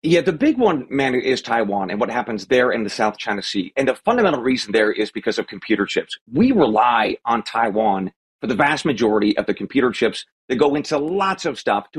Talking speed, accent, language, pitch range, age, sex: 225 wpm, American, English, 115-165 Hz, 40-59, male